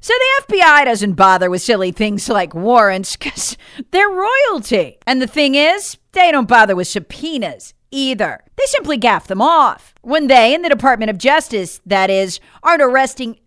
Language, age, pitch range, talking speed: English, 40-59, 190-290 Hz, 175 wpm